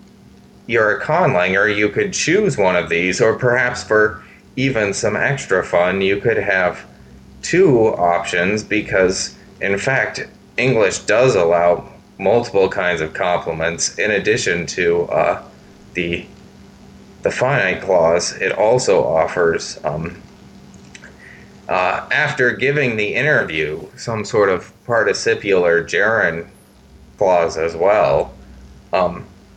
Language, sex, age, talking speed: English, male, 30-49, 115 wpm